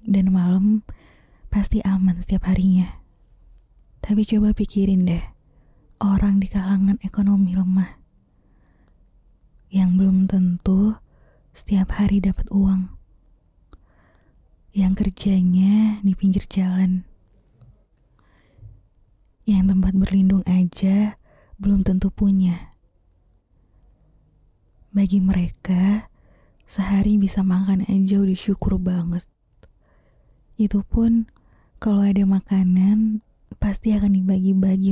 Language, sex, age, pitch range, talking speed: Indonesian, female, 20-39, 185-200 Hz, 90 wpm